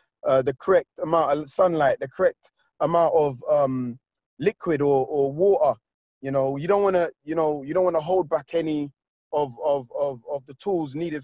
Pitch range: 150-185 Hz